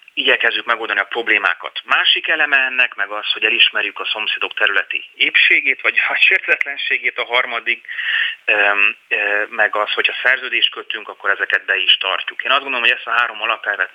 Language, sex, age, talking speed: Hungarian, male, 30-49, 165 wpm